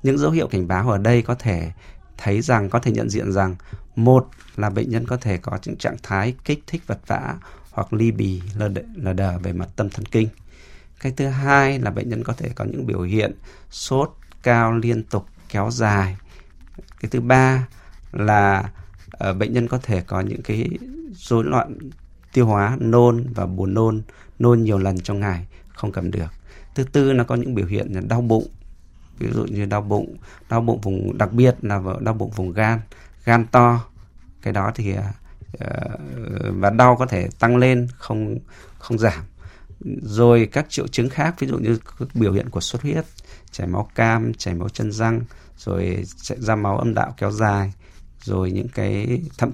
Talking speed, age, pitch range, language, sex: 190 wpm, 20-39, 95-120 Hz, Vietnamese, male